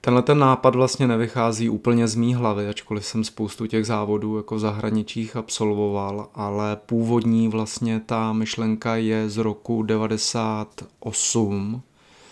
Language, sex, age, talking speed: Czech, male, 30-49, 130 wpm